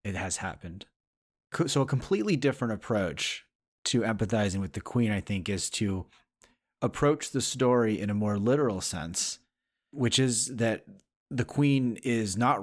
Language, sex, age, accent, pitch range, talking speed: English, male, 30-49, American, 95-120 Hz, 150 wpm